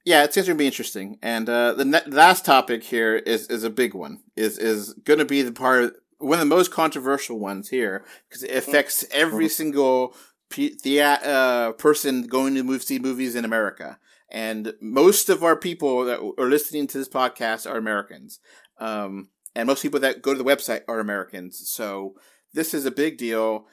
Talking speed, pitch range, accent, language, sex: 200 wpm, 115-145 Hz, American, English, male